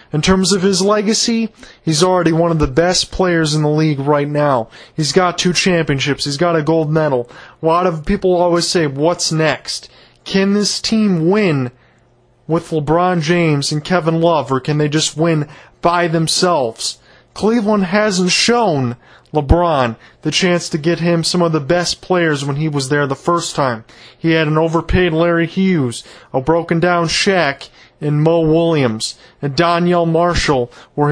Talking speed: 170 wpm